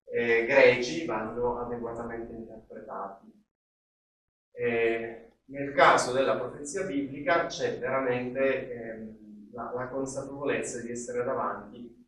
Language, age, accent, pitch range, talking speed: Italian, 30-49, native, 115-135 Hz, 100 wpm